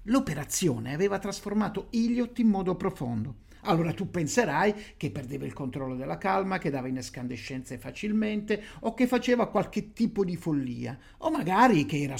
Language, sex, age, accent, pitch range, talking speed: Italian, male, 50-69, native, 140-220 Hz, 155 wpm